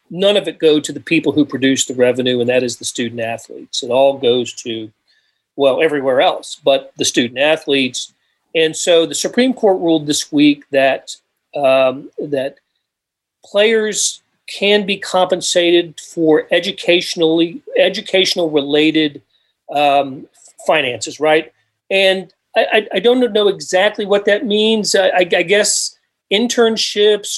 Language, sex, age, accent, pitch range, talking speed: English, male, 40-59, American, 145-200 Hz, 130 wpm